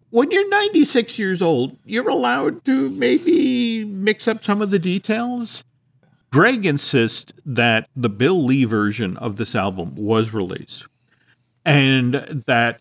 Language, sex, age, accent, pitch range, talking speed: English, male, 50-69, American, 115-150 Hz, 135 wpm